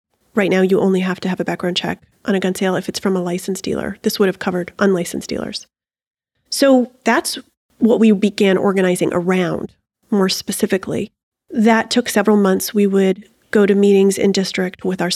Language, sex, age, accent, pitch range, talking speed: English, female, 30-49, American, 185-220 Hz, 190 wpm